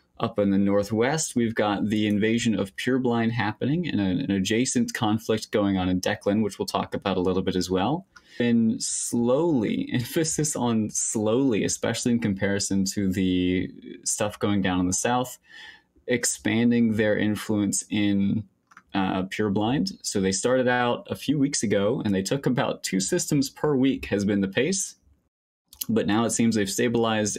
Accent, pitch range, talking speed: American, 95-120 Hz, 170 wpm